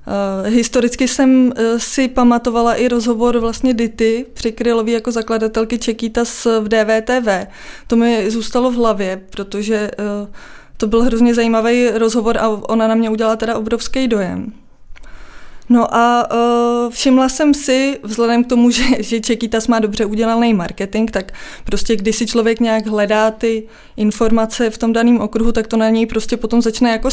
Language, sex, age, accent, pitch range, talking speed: Czech, female, 20-39, native, 220-245 Hz, 160 wpm